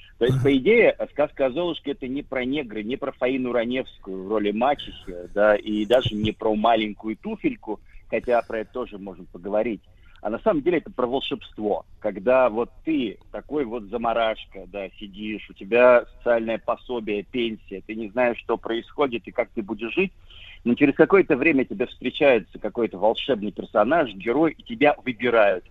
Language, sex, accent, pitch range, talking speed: Russian, male, native, 105-135 Hz, 170 wpm